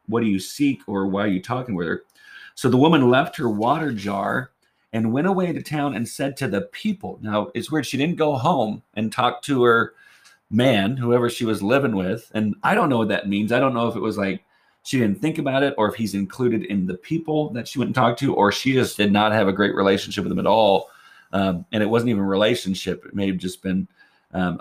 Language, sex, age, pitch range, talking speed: English, male, 40-59, 105-135 Hz, 245 wpm